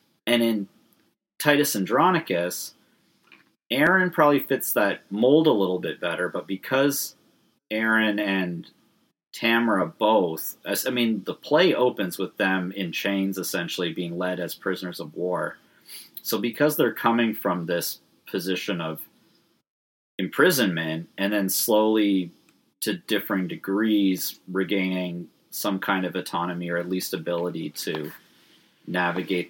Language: English